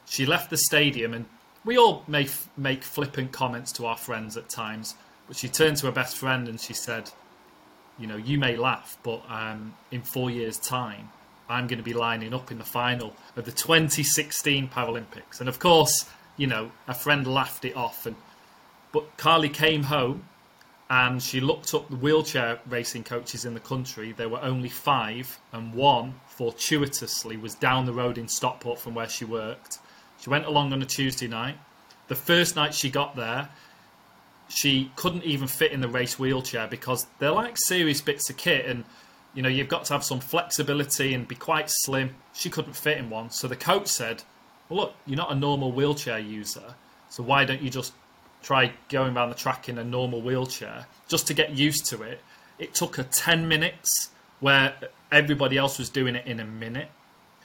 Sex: male